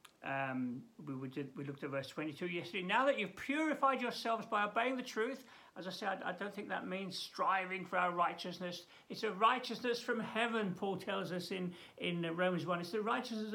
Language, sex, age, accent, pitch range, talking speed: English, male, 60-79, British, 155-225 Hz, 210 wpm